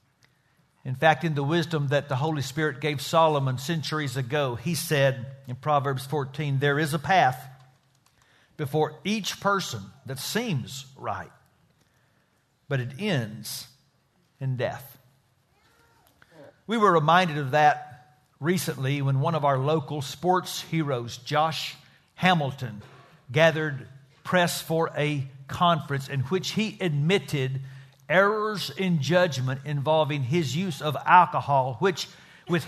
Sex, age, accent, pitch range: male, 50-69, American, 140-185 Hz